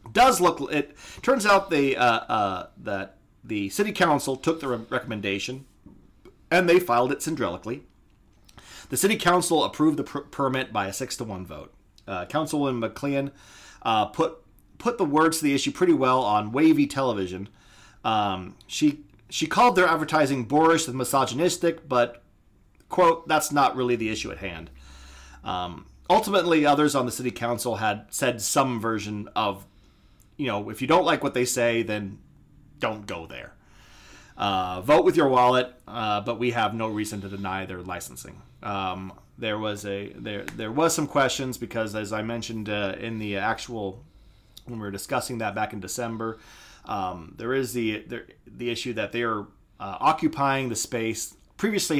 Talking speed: 170 wpm